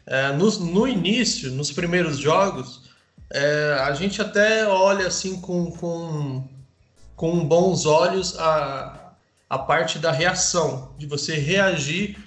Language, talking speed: Portuguese, 110 wpm